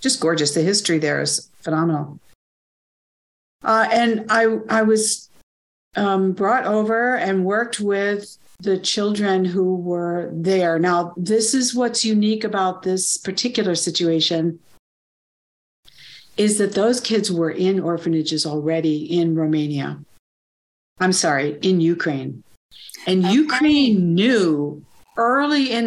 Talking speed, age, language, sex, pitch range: 120 wpm, 60-79, English, female, 165-210 Hz